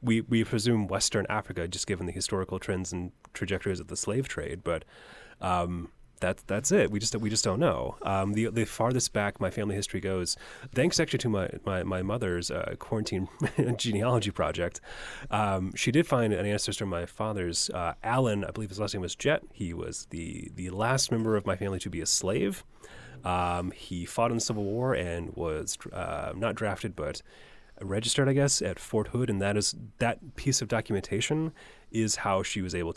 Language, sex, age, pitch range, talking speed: English, male, 30-49, 95-115 Hz, 200 wpm